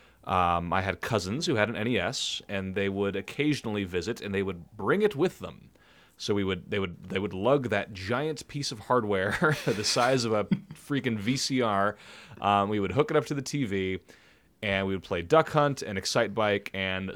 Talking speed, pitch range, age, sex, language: 205 wpm, 90-120 Hz, 30-49, male, English